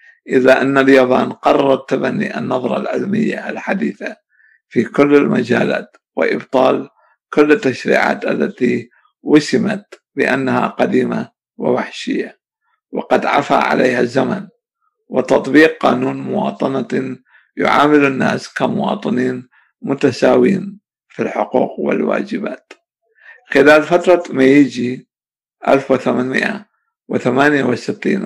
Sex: male